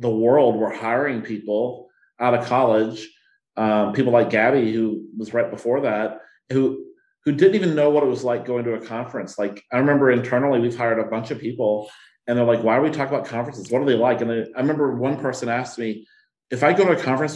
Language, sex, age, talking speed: English, male, 40-59, 230 wpm